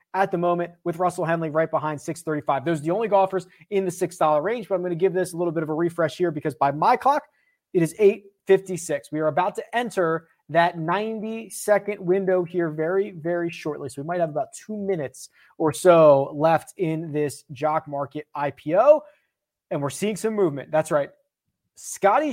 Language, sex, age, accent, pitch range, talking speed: English, male, 30-49, American, 165-220 Hz, 195 wpm